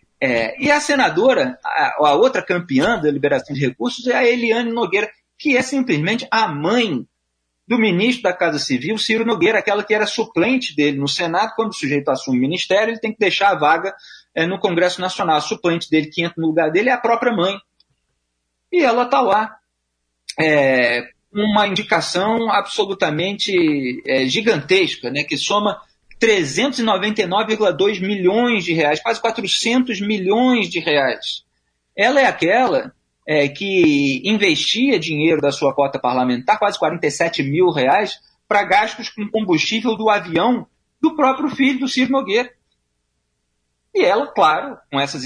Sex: male